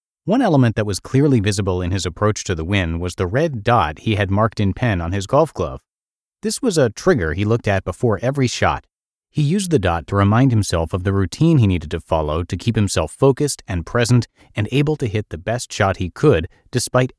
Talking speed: 225 wpm